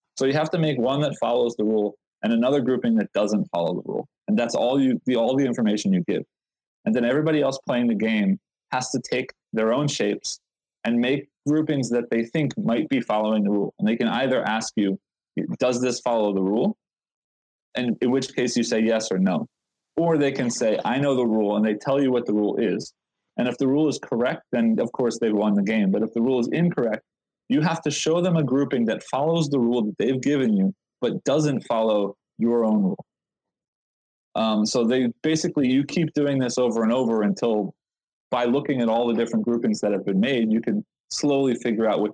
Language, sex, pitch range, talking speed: English, male, 110-145 Hz, 225 wpm